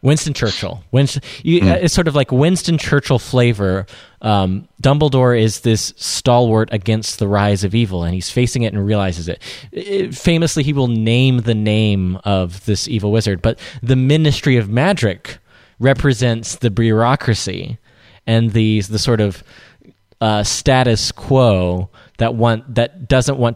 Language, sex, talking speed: English, male, 145 wpm